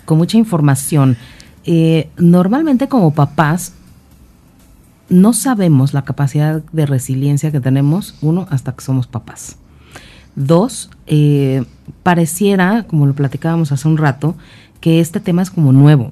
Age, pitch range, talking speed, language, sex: 40-59, 125-165 Hz, 130 wpm, Spanish, female